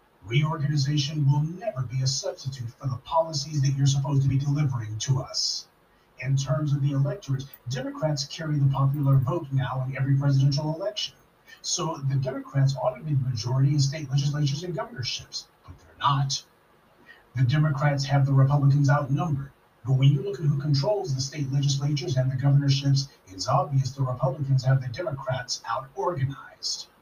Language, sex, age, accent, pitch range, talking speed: English, male, 40-59, American, 135-150 Hz, 165 wpm